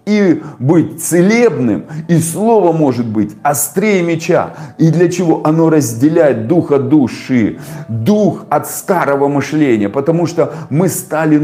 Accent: native